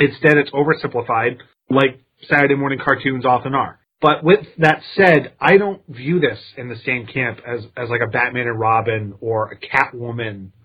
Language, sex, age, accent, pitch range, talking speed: English, male, 30-49, American, 120-150 Hz, 175 wpm